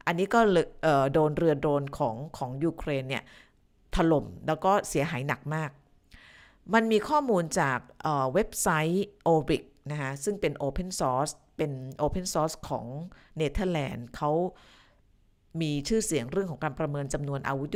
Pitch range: 140-185 Hz